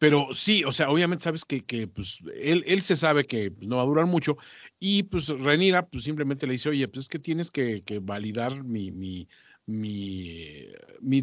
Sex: male